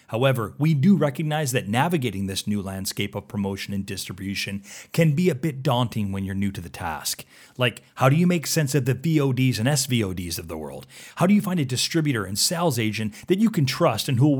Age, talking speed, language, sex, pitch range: 30-49, 225 wpm, English, male, 110-160 Hz